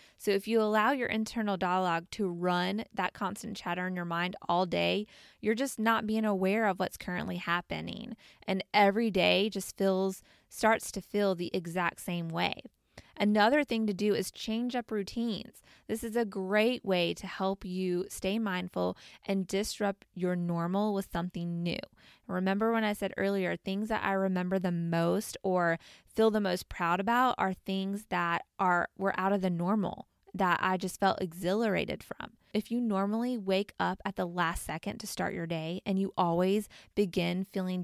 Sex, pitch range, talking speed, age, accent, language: female, 185-215 Hz, 180 wpm, 20-39, American, English